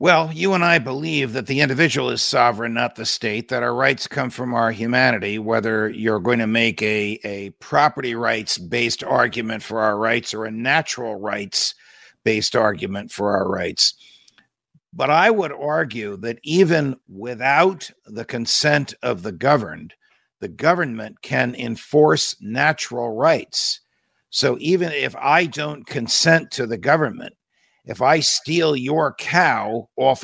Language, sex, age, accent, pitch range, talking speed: English, male, 50-69, American, 115-150 Hz, 145 wpm